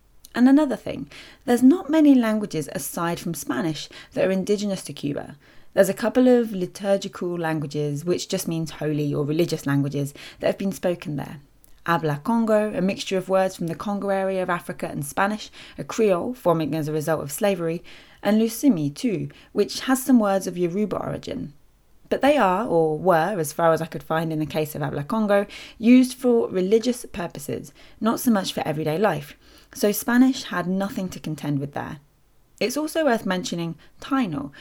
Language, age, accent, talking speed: English, 20-39, British, 180 wpm